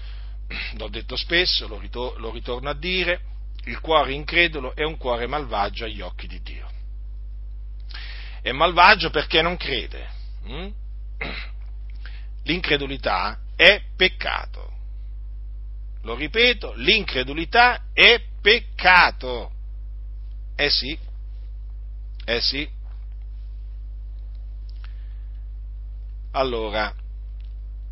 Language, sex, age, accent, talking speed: Italian, male, 50-69, native, 75 wpm